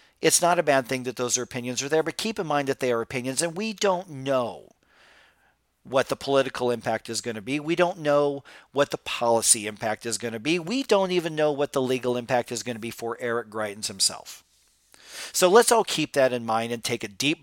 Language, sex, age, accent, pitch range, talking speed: English, male, 40-59, American, 115-140 Hz, 235 wpm